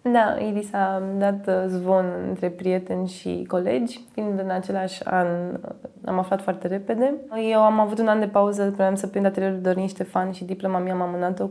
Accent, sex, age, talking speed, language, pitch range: native, female, 20-39, 175 wpm, Romanian, 185-225 Hz